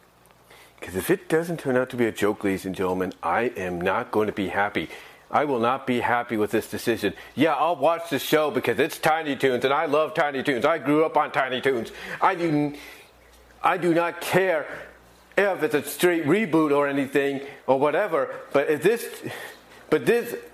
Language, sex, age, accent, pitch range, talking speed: English, male, 40-59, American, 140-210 Hz, 195 wpm